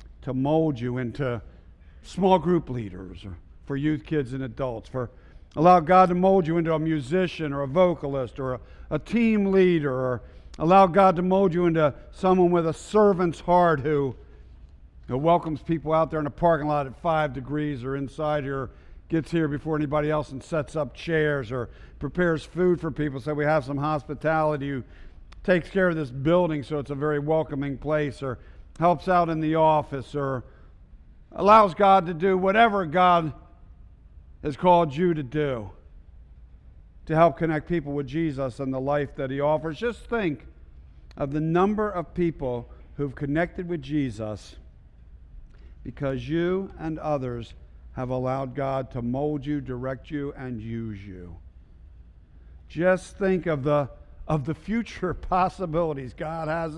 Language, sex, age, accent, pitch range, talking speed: English, male, 50-69, American, 120-165 Hz, 160 wpm